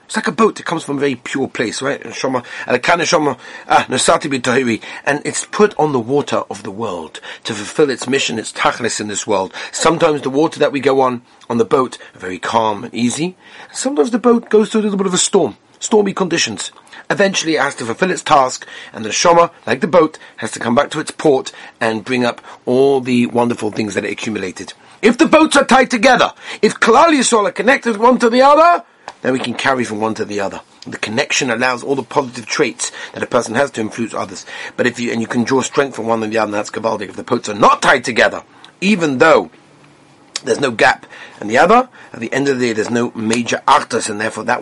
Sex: male